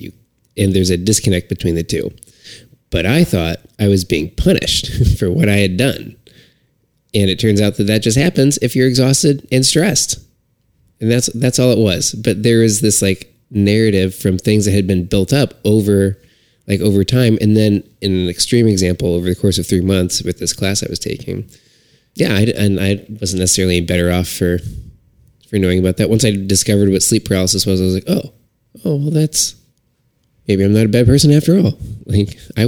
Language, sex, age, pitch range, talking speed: English, male, 20-39, 90-115 Hz, 205 wpm